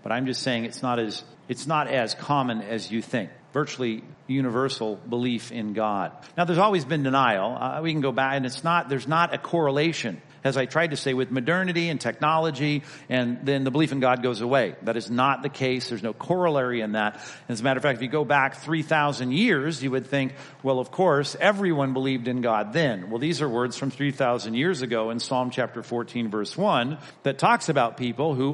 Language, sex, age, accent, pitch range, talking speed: English, male, 50-69, American, 120-150 Hz, 225 wpm